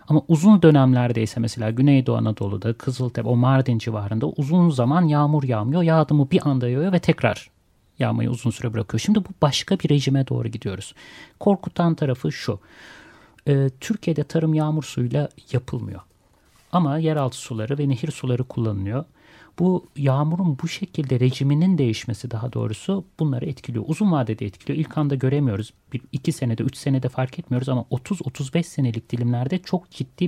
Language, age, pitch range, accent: Turkish, 40-59, 120-155 Hz, native